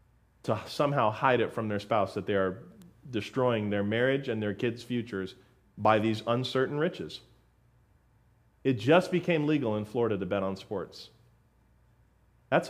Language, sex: English, male